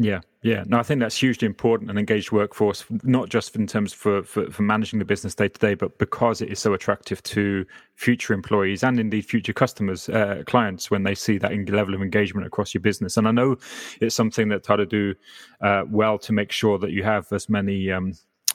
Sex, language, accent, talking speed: male, English, British, 225 wpm